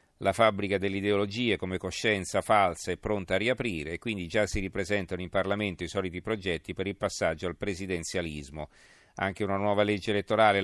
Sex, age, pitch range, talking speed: male, 40-59, 95-110 Hz, 175 wpm